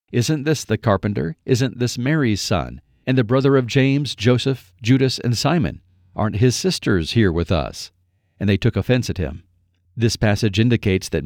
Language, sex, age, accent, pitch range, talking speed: English, male, 50-69, American, 95-125 Hz, 175 wpm